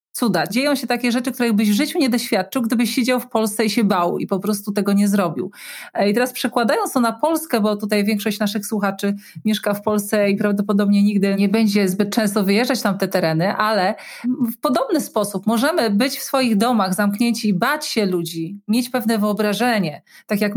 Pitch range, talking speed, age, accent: 205-245 Hz, 200 wpm, 40-59, native